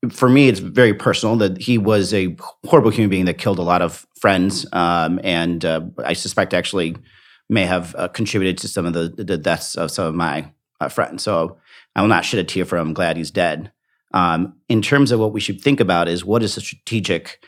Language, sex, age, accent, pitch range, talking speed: English, male, 40-59, American, 90-115 Hz, 230 wpm